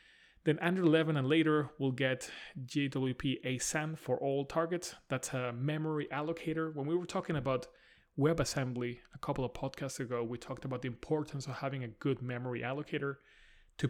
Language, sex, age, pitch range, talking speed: English, male, 30-49, 125-150 Hz, 170 wpm